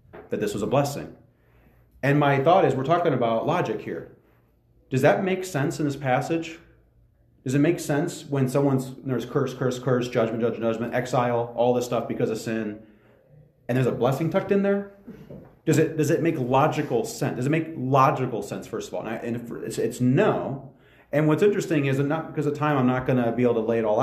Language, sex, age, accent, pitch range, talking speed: English, male, 30-49, American, 120-155 Hz, 220 wpm